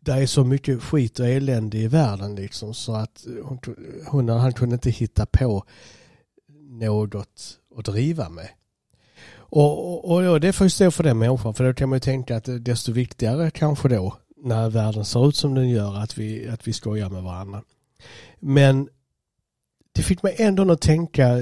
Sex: male